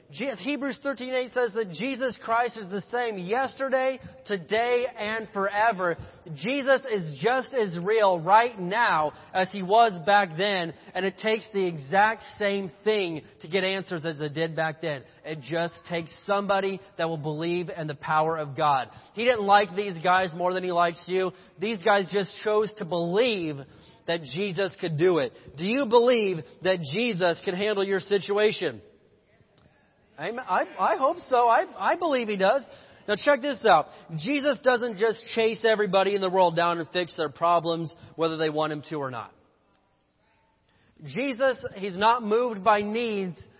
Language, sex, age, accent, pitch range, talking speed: English, male, 30-49, American, 165-215 Hz, 170 wpm